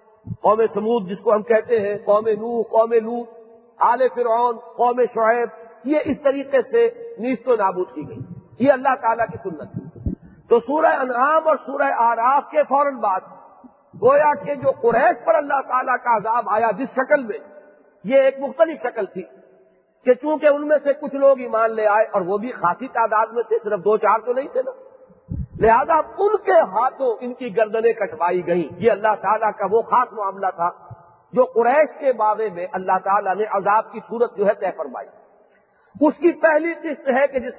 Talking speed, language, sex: 185 wpm, English, male